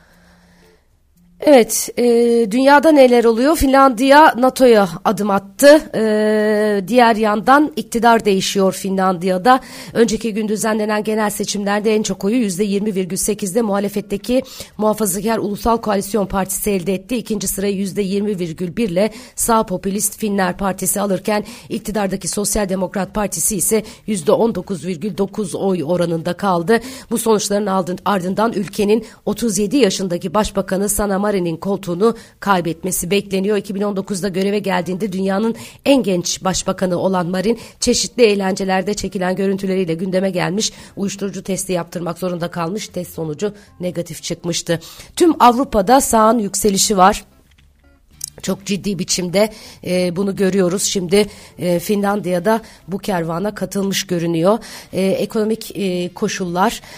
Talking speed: 115 wpm